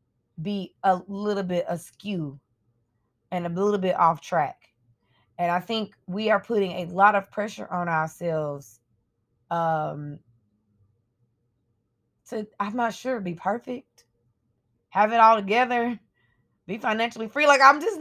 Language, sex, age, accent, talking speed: English, female, 20-39, American, 135 wpm